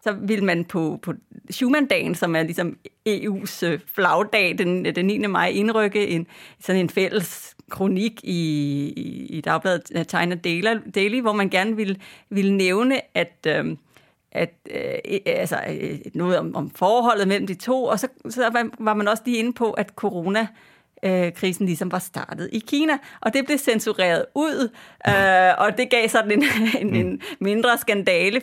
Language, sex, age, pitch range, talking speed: English, female, 30-49, 185-235 Hz, 155 wpm